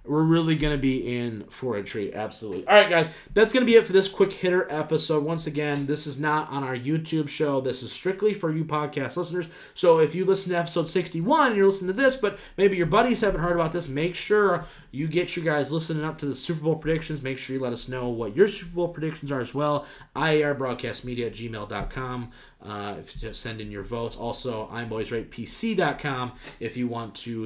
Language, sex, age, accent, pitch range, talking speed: English, male, 30-49, American, 125-175 Hz, 220 wpm